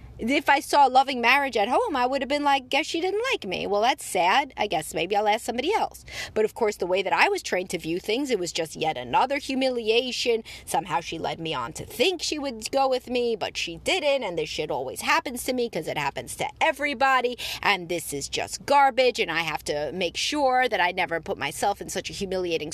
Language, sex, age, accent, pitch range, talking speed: English, female, 30-49, American, 195-285 Hz, 245 wpm